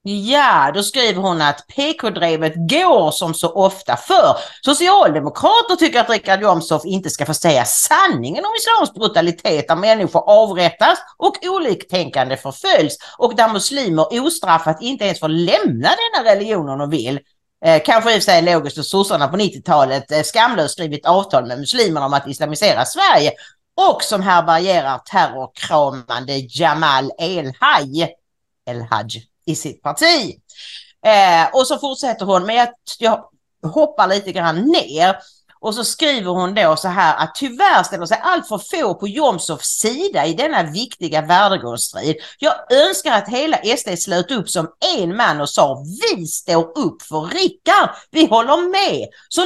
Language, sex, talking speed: English, female, 150 wpm